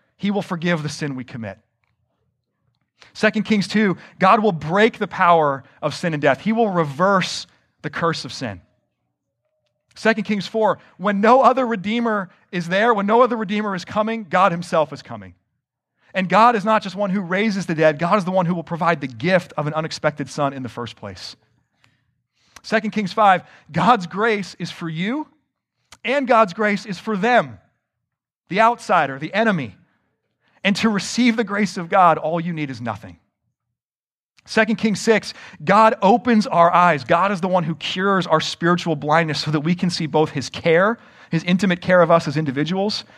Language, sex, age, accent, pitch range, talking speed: English, male, 40-59, American, 130-205 Hz, 185 wpm